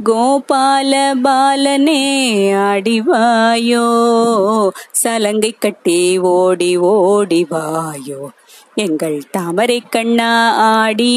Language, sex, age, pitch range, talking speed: Tamil, female, 20-39, 215-270 Hz, 60 wpm